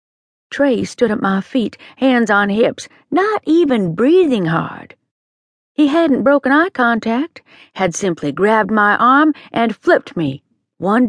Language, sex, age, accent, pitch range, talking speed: English, female, 50-69, American, 180-285 Hz, 140 wpm